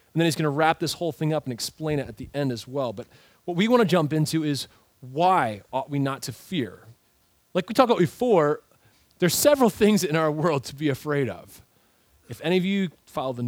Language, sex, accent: English, male, American